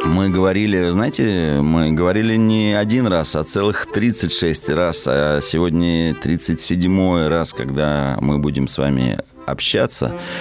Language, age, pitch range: Russian, 30-49, 75-95 Hz